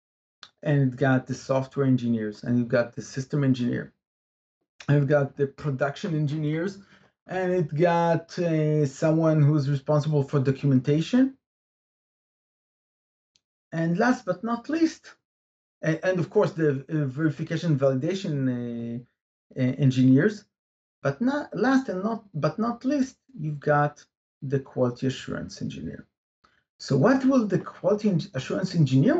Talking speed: 125 wpm